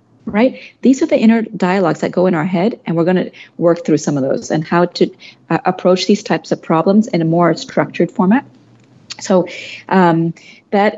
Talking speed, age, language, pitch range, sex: 200 wpm, 30-49, English, 165-205 Hz, female